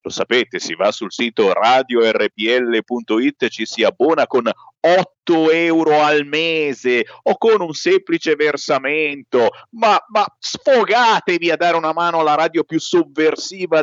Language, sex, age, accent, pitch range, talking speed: Italian, male, 50-69, native, 150-250 Hz, 135 wpm